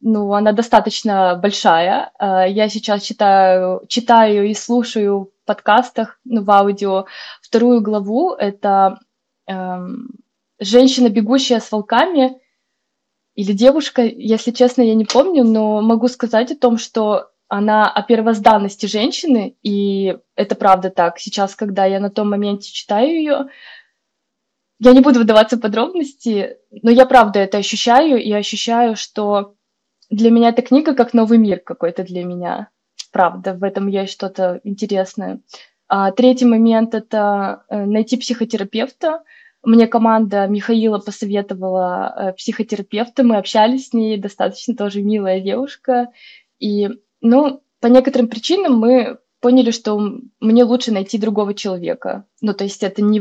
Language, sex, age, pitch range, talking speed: Russian, female, 20-39, 205-245 Hz, 130 wpm